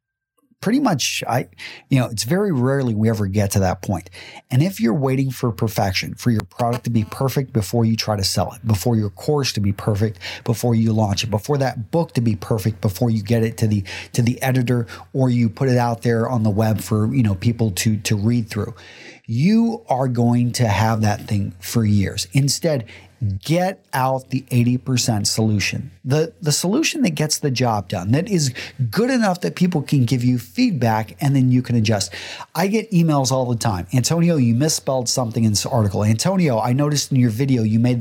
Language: English